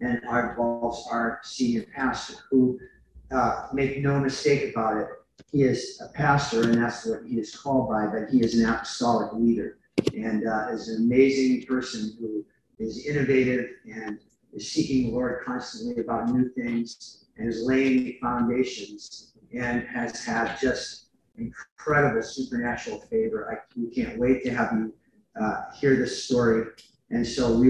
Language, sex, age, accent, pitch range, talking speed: English, male, 40-59, American, 120-155 Hz, 155 wpm